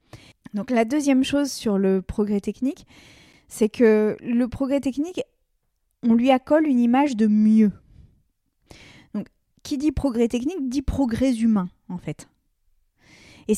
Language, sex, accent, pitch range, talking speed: French, female, French, 210-260 Hz, 135 wpm